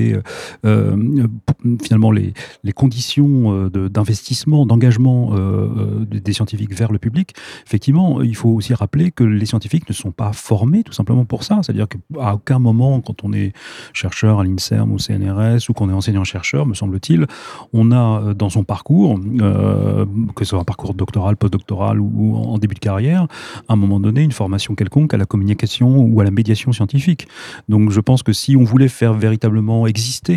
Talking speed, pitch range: 180 wpm, 105-120 Hz